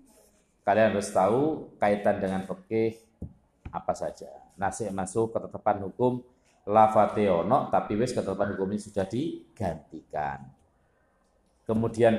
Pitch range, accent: 90-120 Hz, native